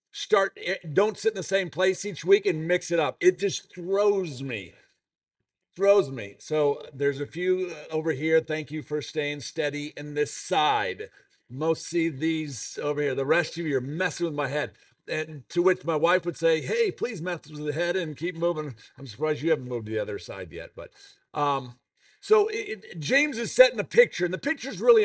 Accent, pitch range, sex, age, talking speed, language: American, 155-235 Hz, male, 50-69, 210 wpm, English